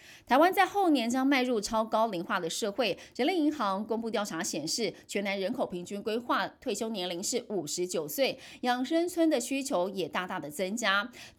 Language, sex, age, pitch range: Chinese, female, 30-49, 185-280 Hz